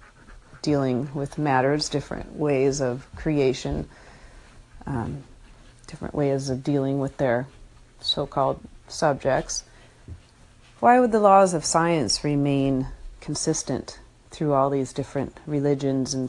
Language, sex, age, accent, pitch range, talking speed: English, female, 30-49, American, 135-155 Hz, 110 wpm